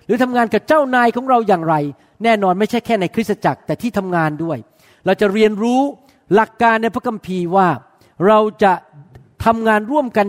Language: Thai